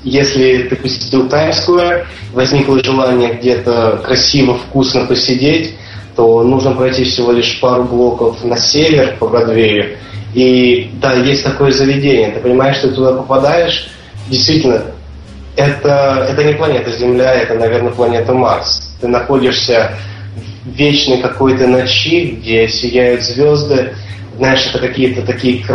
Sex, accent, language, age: male, native, Russian, 20-39